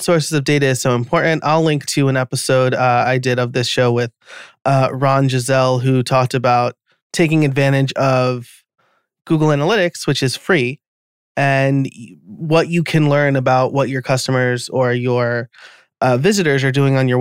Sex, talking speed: male, 170 wpm